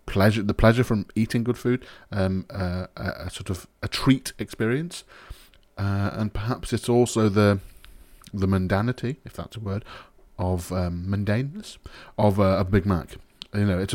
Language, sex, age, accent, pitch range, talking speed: English, male, 30-49, British, 95-115 Hz, 160 wpm